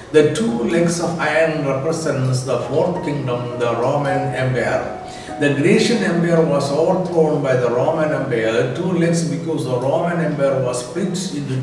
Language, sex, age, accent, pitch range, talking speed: Malayalam, male, 60-79, native, 130-165 Hz, 155 wpm